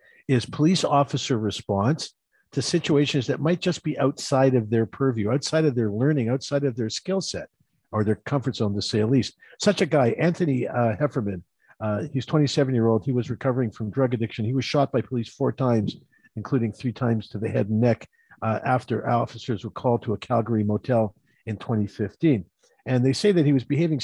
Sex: male